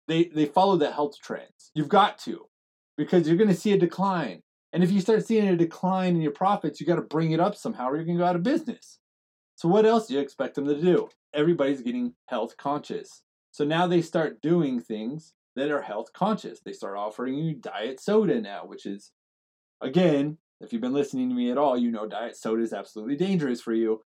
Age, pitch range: 30-49, 125-185 Hz